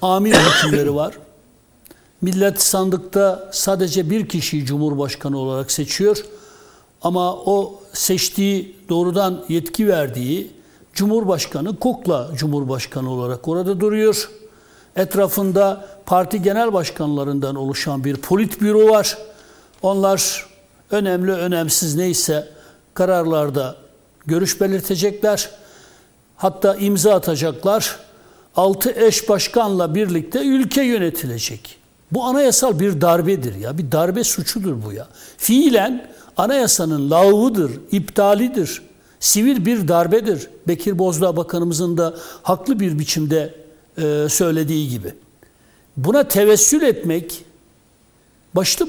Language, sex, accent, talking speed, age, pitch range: Turkish, male, native, 95 wpm, 60-79, 155-210 Hz